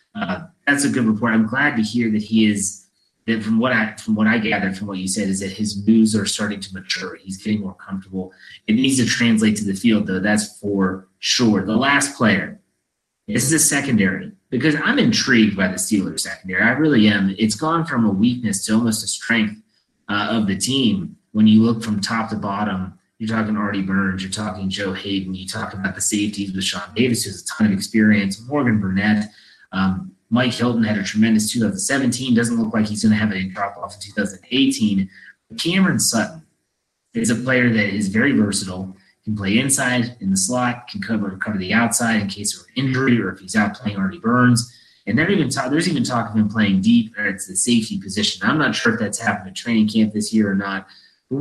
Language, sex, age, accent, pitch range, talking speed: English, male, 30-49, American, 100-120 Hz, 215 wpm